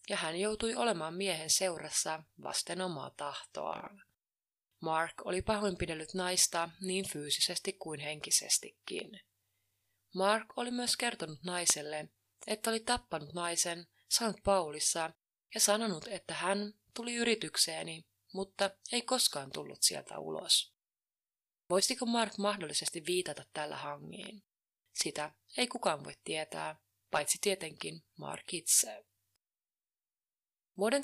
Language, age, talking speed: Finnish, 20-39, 110 wpm